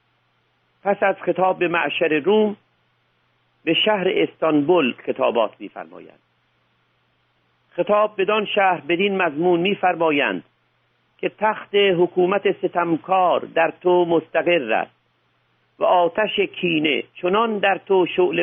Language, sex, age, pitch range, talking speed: Persian, male, 50-69, 155-185 Hz, 105 wpm